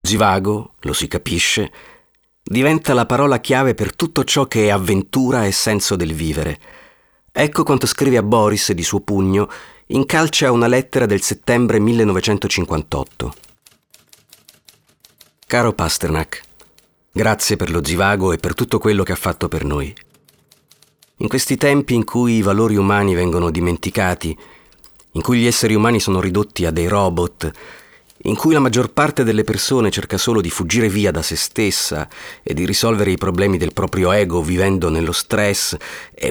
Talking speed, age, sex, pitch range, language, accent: 160 wpm, 40-59, male, 90-120 Hz, Italian, native